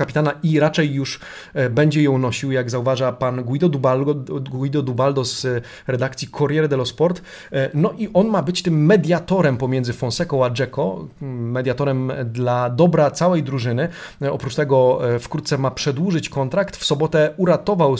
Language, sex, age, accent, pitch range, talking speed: Polish, male, 30-49, native, 130-155 Hz, 145 wpm